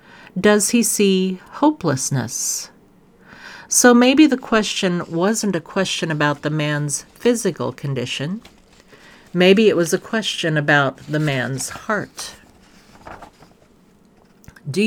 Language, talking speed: English, 105 wpm